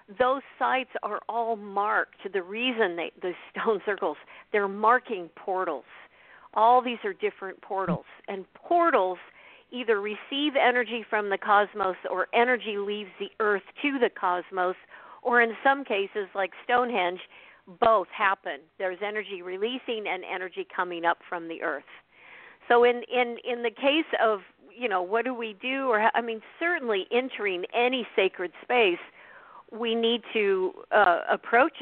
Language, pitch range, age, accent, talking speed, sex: English, 185-240 Hz, 50-69, American, 150 wpm, female